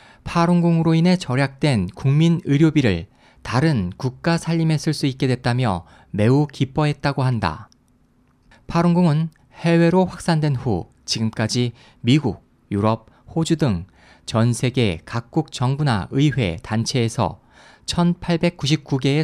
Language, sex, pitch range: Korean, male, 115-155 Hz